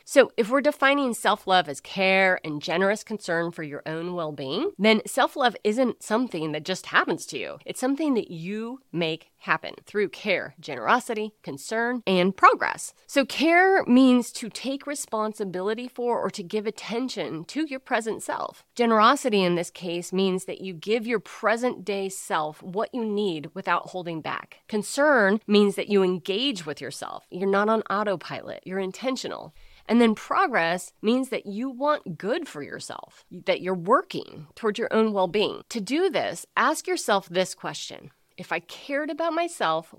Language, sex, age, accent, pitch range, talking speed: English, female, 30-49, American, 180-250 Hz, 165 wpm